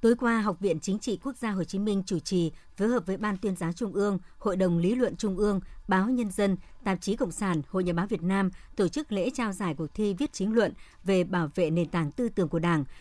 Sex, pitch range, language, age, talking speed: male, 180-220 Hz, Vietnamese, 60-79, 270 wpm